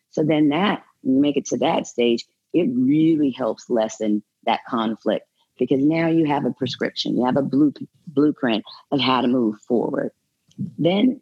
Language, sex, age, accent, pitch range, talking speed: English, female, 40-59, American, 130-160 Hz, 170 wpm